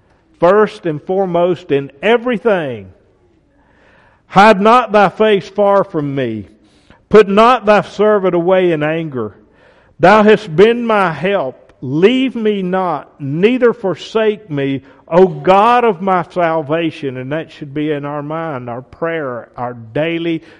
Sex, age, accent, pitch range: male, 50-69, American, 130-200 Hz